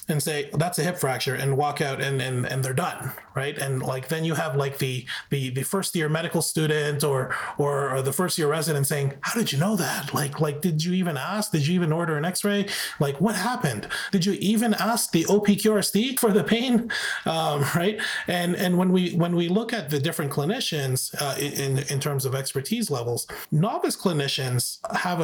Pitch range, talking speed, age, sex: 135-185 Hz, 210 wpm, 30-49, male